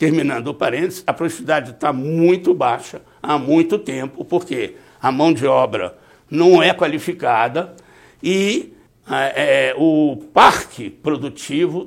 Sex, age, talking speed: male, 60-79, 120 wpm